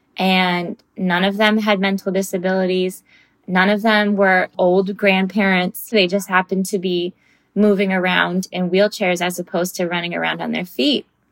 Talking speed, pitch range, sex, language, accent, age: 160 wpm, 180-210 Hz, female, English, American, 20-39